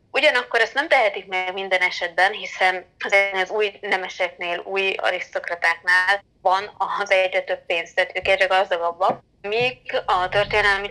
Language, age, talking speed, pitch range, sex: Hungarian, 20-39, 125 wpm, 175-195 Hz, female